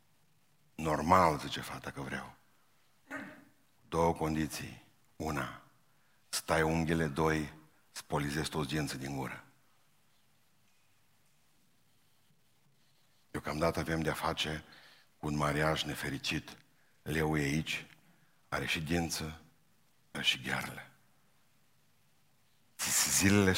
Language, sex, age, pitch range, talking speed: Romanian, male, 60-79, 75-95 Hz, 90 wpm